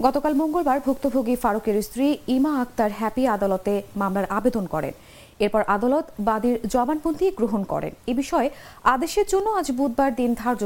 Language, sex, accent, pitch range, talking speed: English, female, Indian, 210-285 Hz, 135 wpm